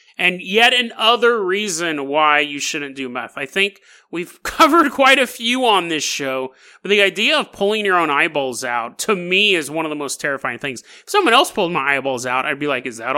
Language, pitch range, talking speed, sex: English, 160-250 Hz, 225 wpm, male